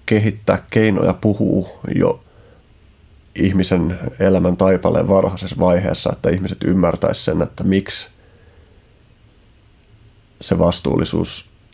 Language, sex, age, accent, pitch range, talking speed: Finnish, male, 30-49, native, 95-110 Hz, 85 wpm